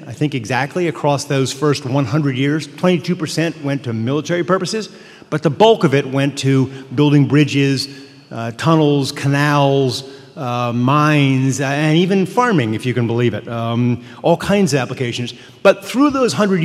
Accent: American